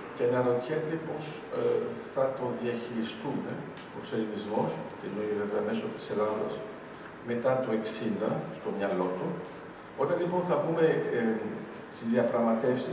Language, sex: Greek, male